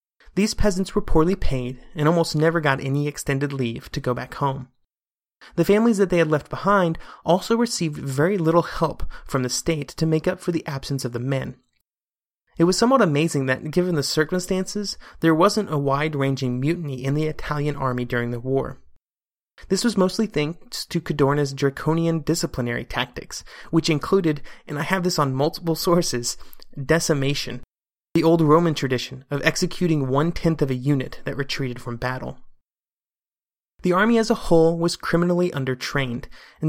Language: English